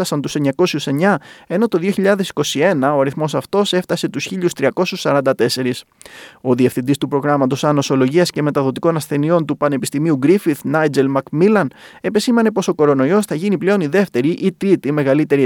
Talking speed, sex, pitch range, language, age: 145 wpm, male, 135-190 Hz, Greek, 20-39